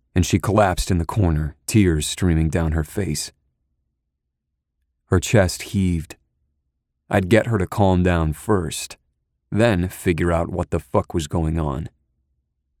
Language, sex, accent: English, male, American